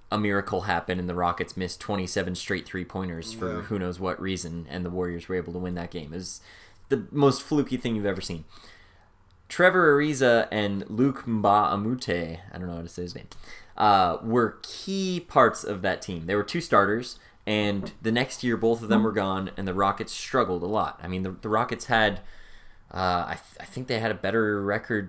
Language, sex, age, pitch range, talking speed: English, male, 20-39, 90-115 Hz, 210 wpm